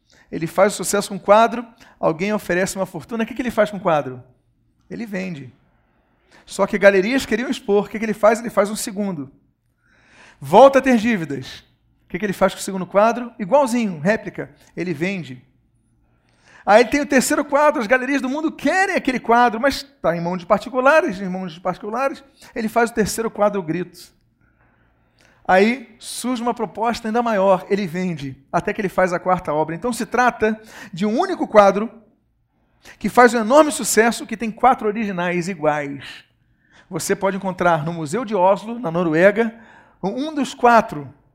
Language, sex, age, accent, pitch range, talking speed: Portuguese, male, 40-59, Brazilian, 175-230 Hz, 180 wpm